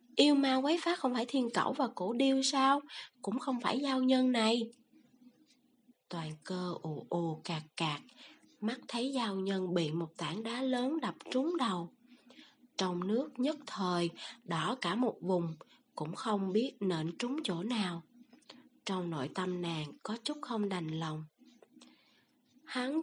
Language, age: Vietnamese, 20-39